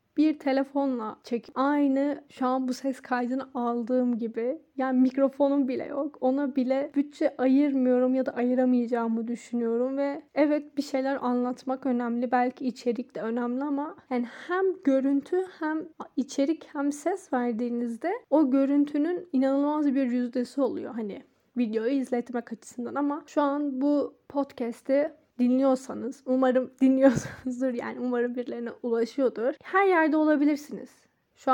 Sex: female